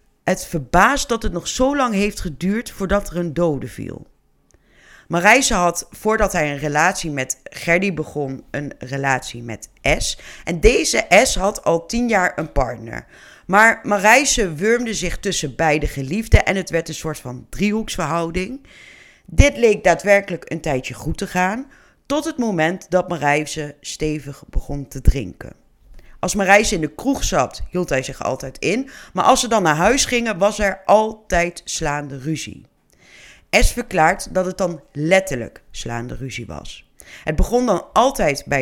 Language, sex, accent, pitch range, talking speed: Dutch, female, Dutch, 145-205 Hz, 160 wpm